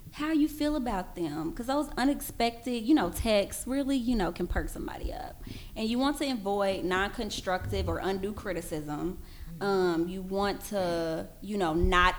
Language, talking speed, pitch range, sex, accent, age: English, 165 wpm, 170-215 Hz, female, American, 20-39